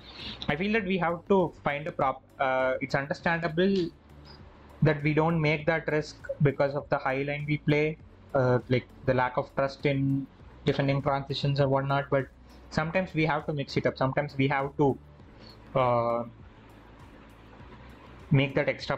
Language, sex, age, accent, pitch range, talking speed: English, male, 30-49, Indian, 130-170 Hz, 165 wpm